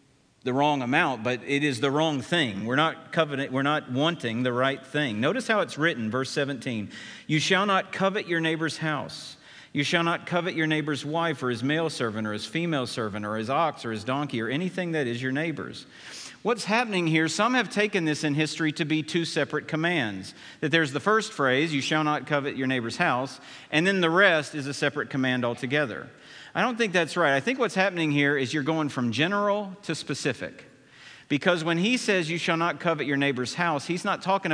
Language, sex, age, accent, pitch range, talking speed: English, male, 50-69, American, 135-170 Hz, 215 wpm